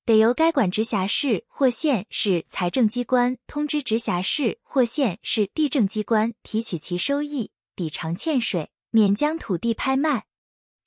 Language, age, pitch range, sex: Chinese, 20-39, 195-280 Hz, female